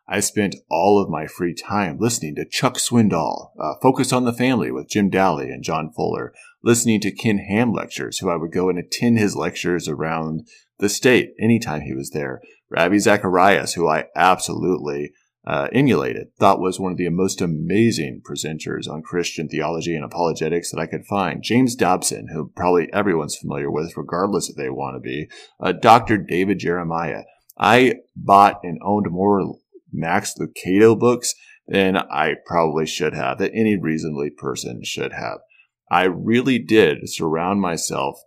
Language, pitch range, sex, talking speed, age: English, 80-110 Hz, male, 170 wpm, 30-49